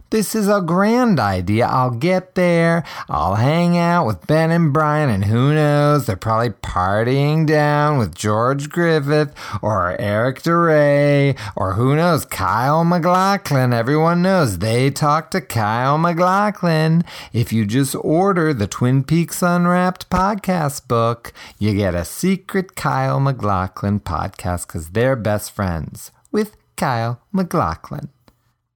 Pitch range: 105-160 Hz